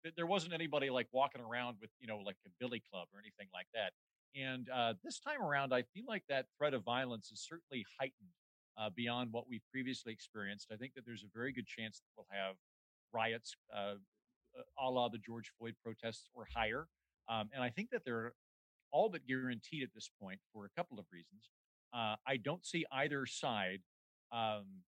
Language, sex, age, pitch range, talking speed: English, male, 50-69, 110-130 Hz, 200 wpm